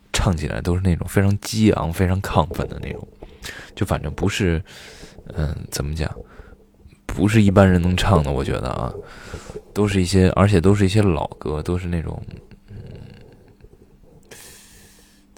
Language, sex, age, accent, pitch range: Chinese, male, 20-39, native, 85-100 Hz